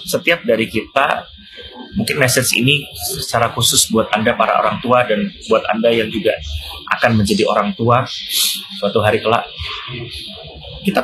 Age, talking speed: 30-49, 140 wpm